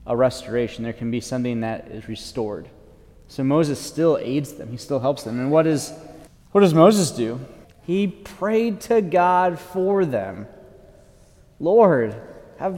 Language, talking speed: English, 155 wpm